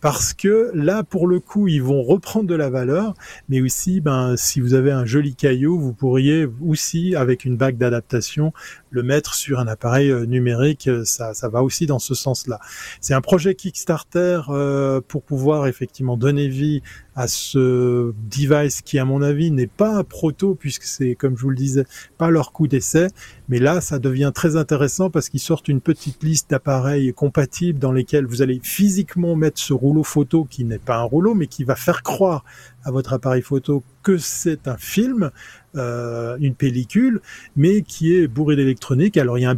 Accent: French